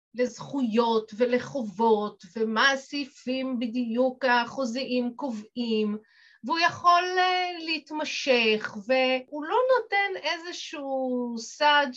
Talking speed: 80 wpm